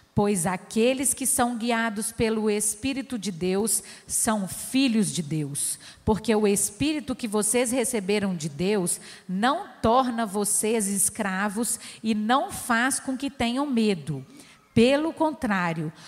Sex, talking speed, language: female, 125 wpm, Portuguese